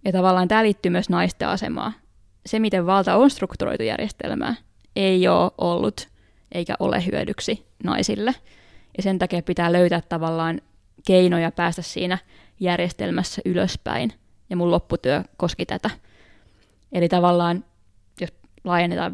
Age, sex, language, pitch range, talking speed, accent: 20-39, female, Finnish, 170-190 Hz, 125 wpm, native